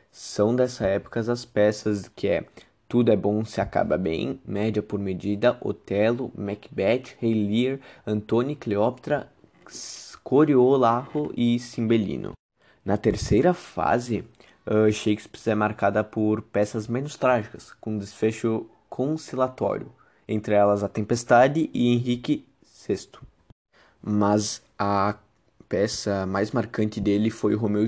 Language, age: Portuguese, 20-39